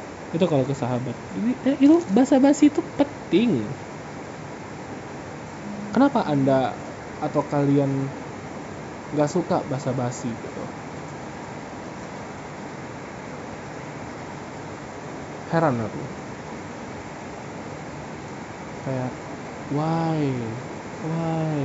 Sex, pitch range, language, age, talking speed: male, 130-175 Hz, Indonesian, 20-39, 65 wpm